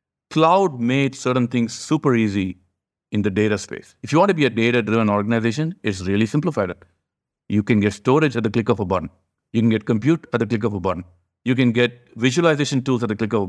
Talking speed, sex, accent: 235 wpm, male, Indian